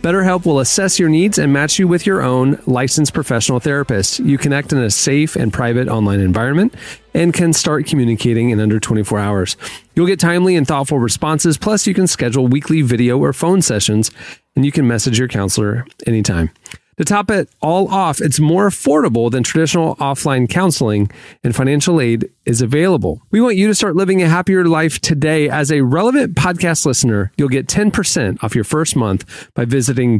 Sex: male